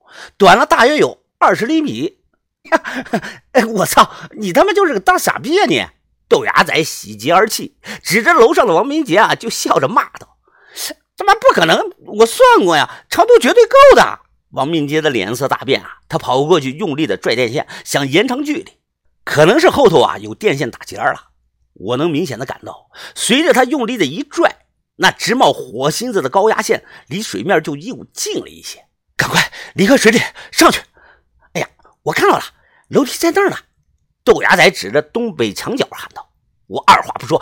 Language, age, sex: Chinese, 50-69, male